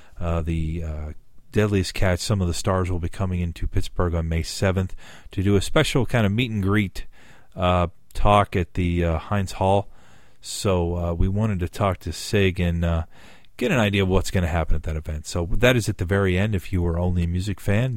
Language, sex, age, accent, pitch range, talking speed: English, male, 40-59, American, 85-105 Hz, 225 wpm